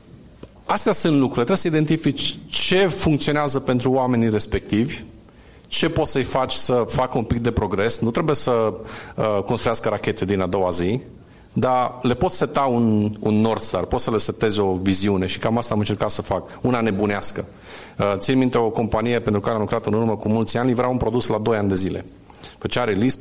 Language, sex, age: Romanian, male, 40-59